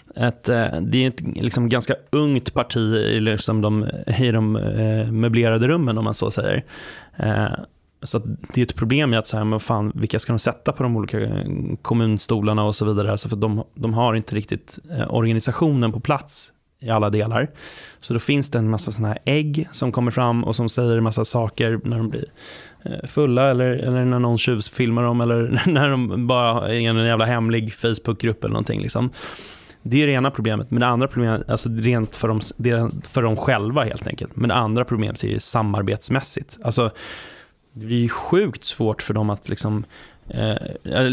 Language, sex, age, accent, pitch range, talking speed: Swedish, male, 20-39, native, 110-130 Hz, 190 wpm